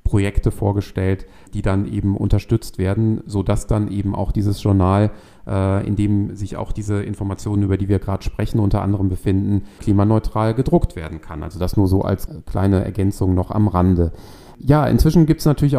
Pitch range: 100-120 Hz